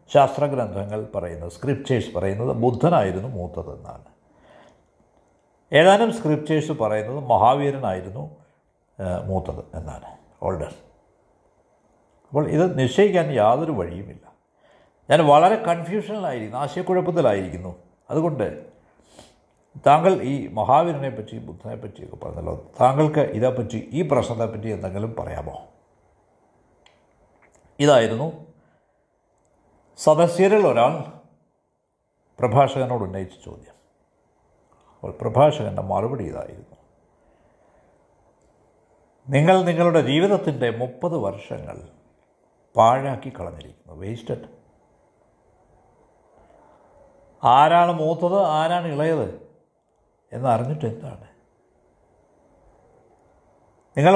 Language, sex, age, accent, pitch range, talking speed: Malayalam, male, 60-79, native, 105-170 Hz, 70 wpm